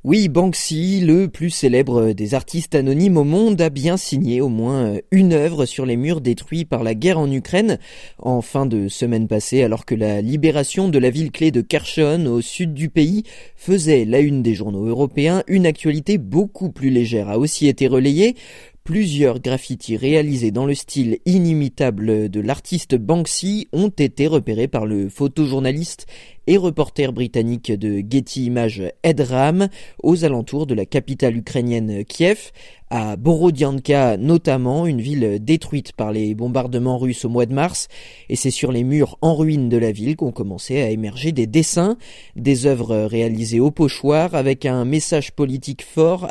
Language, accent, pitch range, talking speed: French, French, 120-160 Hz, 165 wpm